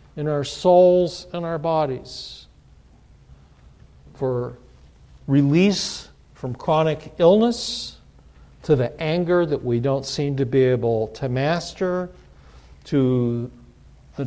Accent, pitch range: American, 135-185 Hz